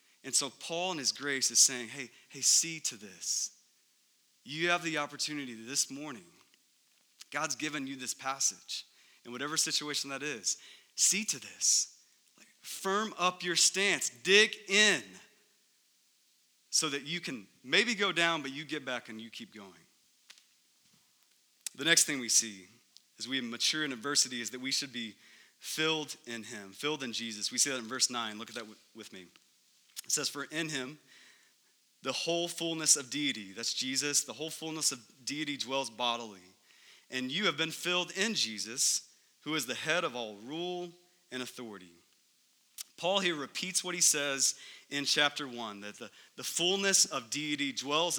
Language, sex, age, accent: English, male, 30-49, American